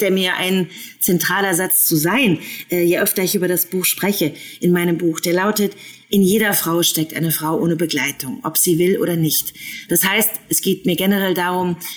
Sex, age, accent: female, 30-49, German